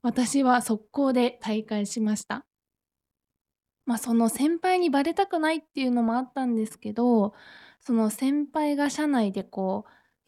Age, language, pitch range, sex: 20-39, Japanese, 210-260 Hz, female